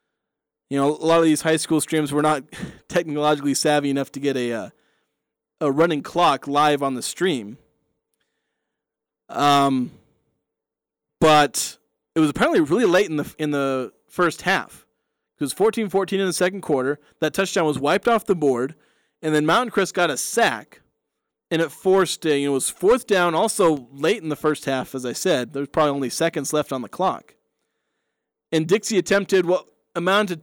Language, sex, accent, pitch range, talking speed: English, male, American, 145-190 Hz, 180 wpm